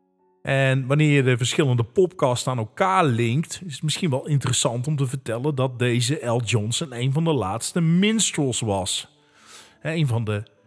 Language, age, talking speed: English, 40-59, 170 wpm